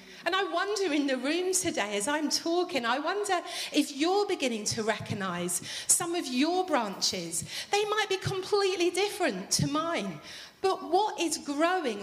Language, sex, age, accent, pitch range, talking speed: English, female, 40-59, British, 250-355 Hz, 160 wpm